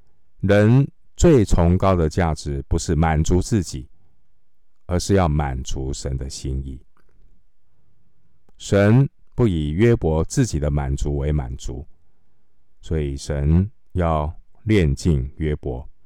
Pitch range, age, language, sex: 75-100 Hz, 50-69, Chinese, male